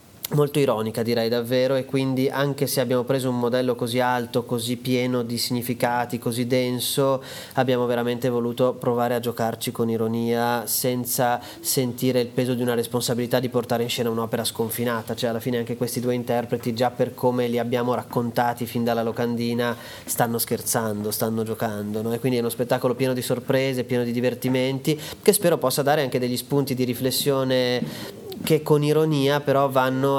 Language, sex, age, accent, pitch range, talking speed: Italian, male, 30-49, native, 120-135 Hz, 170 wpm